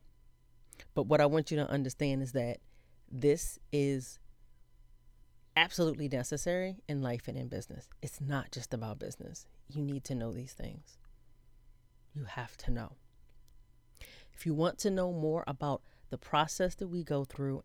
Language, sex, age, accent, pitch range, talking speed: English, female, 30-49, American, 135-170 Hz, 155 wpm